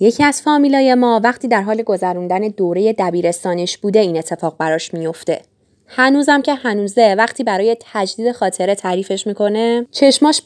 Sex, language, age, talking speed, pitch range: female, English, 10-29, 145 wpm, 205-285 Hz